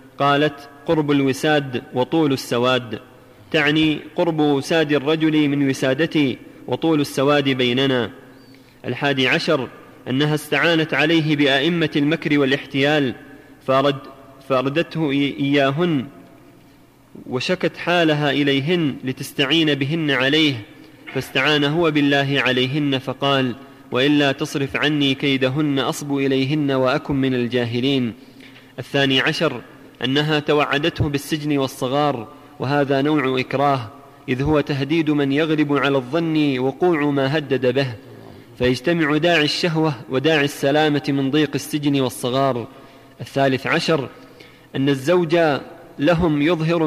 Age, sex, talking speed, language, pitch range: 30-49, male, 100 wpm, Arabic, 135-155 Hz